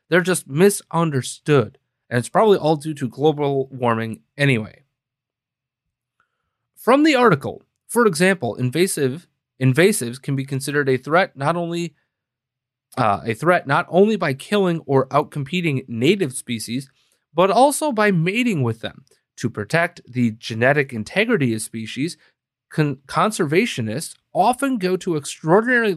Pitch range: 130-180 Hz